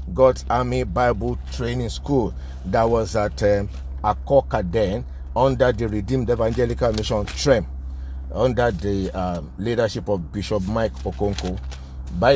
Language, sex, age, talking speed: English, male, 50-69, 125 wpm